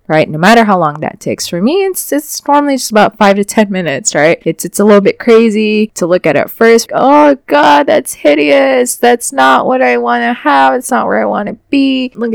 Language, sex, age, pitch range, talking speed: English, female, 20-39, 165-230 Hz, 230 wpm